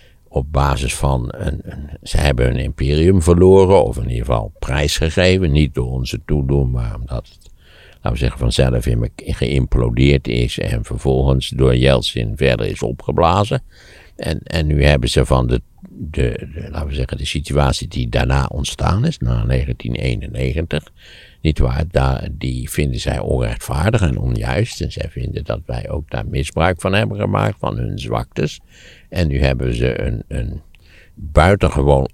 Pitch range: 65-80 Hz